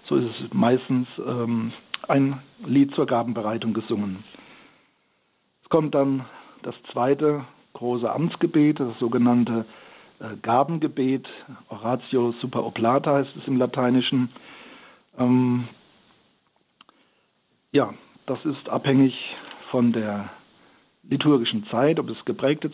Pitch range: 120-140 Hz